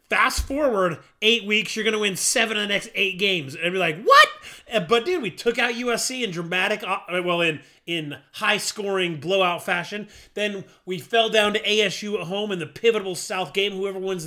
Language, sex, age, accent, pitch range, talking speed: English, male, 30-49, American, 160-210 Hz, 200 wpm